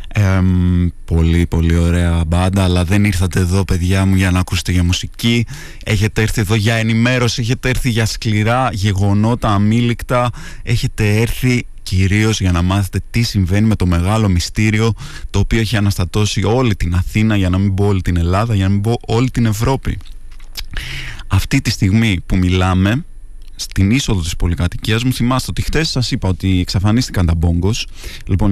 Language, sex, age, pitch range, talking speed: Greek, male, 20-39, 95-120 Hz, 165 wpm